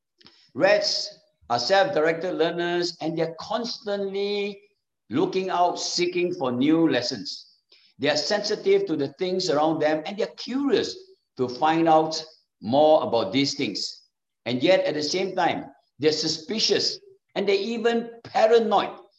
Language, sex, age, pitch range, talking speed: English, male, 60-79, 155-210 Hz, 135 wpm